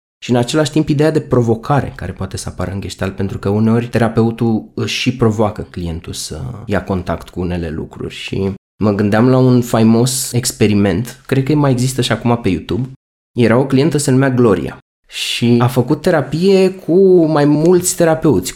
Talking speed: 180 wpm